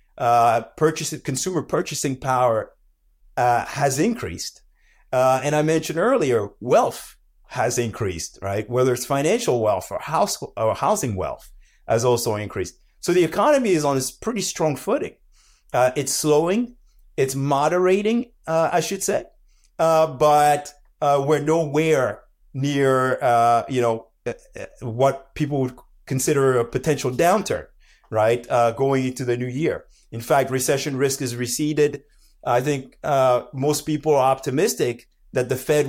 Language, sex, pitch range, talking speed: English, male, 125-160 Hz, 140 wpm